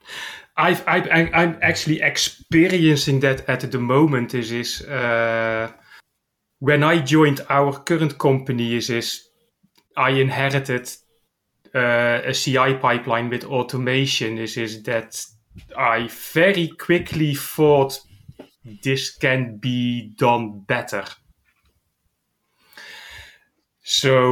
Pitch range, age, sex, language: 120-145 Hz, 30-49, male, English